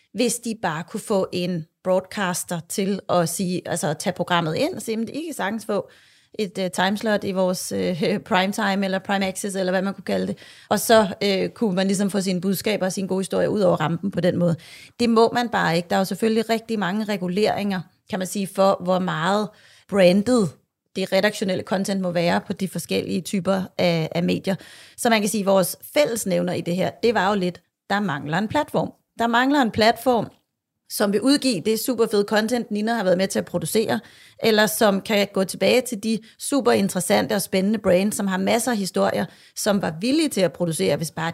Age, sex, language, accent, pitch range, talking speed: 30-49, female, English, Danish, 185-230 Hz, 210 wpm